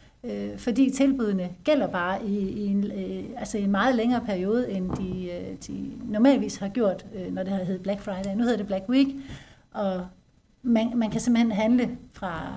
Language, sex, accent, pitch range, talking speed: Danish, female, native, 190-230 Hz, 160 wpm